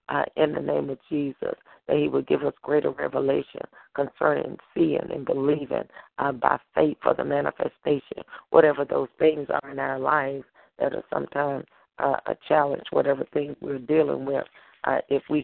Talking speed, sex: 170 wpm, female